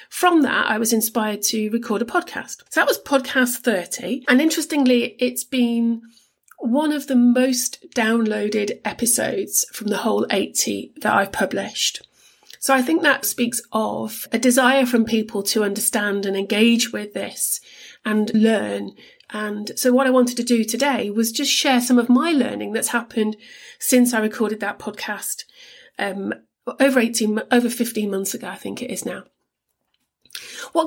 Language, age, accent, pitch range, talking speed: English, 40-59, British, 220-260 Hz, 165 wpm